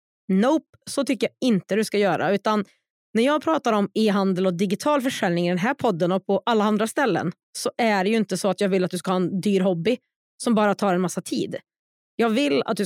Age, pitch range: 30-49, 190-250 Hz